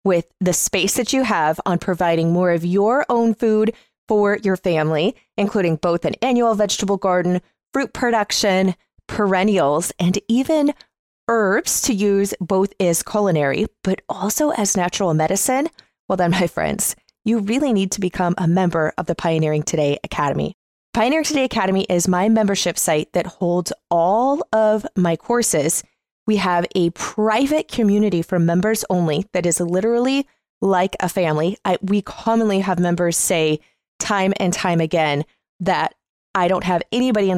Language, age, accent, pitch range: English, 20-39, American, 175-210 Hz